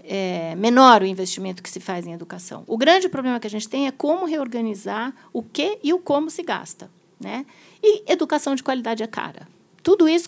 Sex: female